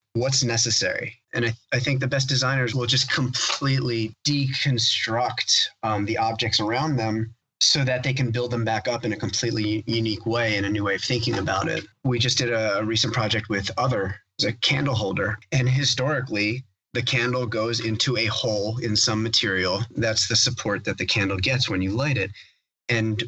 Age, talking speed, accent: 30-49, 195 wpm, American